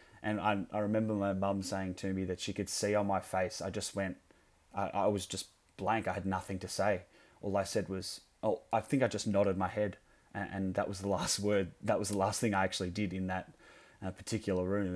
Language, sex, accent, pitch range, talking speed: English, male, Australian, 95-105 Hz, 245 wpm